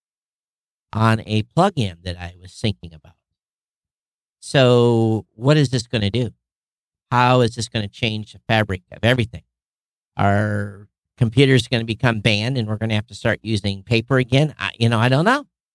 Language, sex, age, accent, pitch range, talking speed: English, male, 50-69, American, 110-145 Hz, 175 wpm